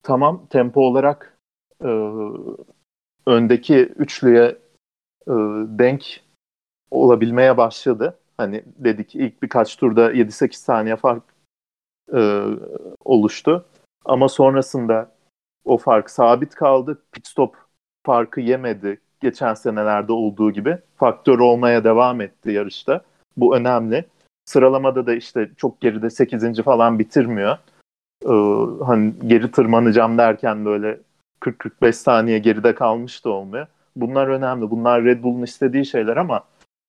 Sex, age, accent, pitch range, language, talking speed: male, 40-59, native, 115-145 Hz, Turkish, 110 wpm